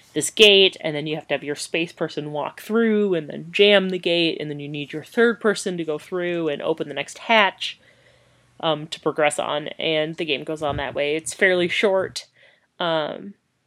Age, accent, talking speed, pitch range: 30-49, American, 210 wpm, 155-205 Hz